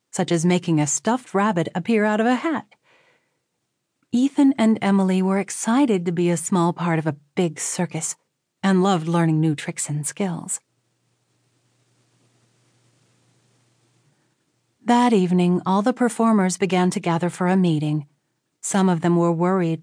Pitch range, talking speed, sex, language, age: 160-195 Hz, 145 wpm, female, English, 40-59